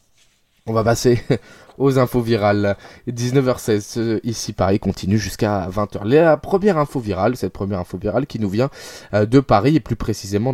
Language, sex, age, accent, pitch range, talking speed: French, male, 20-39, French, 100-140 Hz, 160 wpm